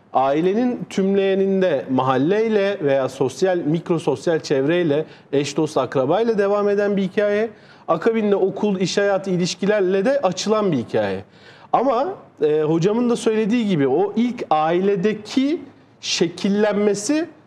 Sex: male